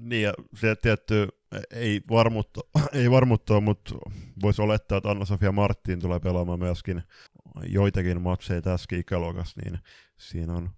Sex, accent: male, native